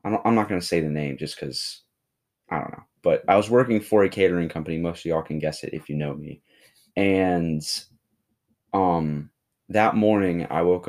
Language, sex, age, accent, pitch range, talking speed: English, male, 20-39, American, 75-90 Hz, 200 wpm